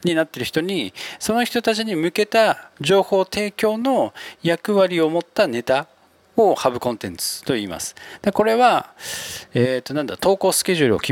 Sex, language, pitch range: male, Japanese, 120-175 Hz